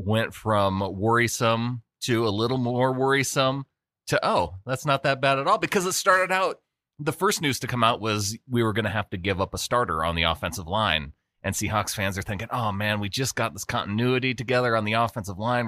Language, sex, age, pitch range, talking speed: English, male, 30-49, 100-125 Hz, 220 wpm